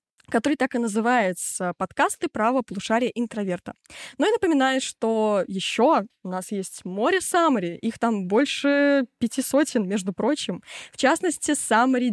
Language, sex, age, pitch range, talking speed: Russian, female, 20-39, 200-260 Hz, 140 wpm